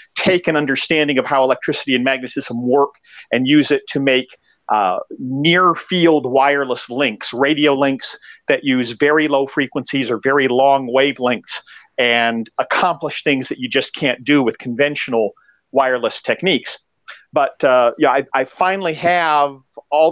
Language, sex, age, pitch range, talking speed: English, male, 40-59, 130-175 Hz, 150 wpm